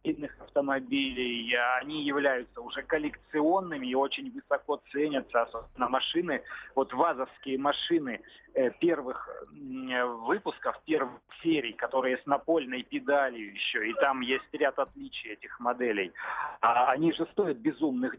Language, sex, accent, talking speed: Russian, male, native, 110 wpm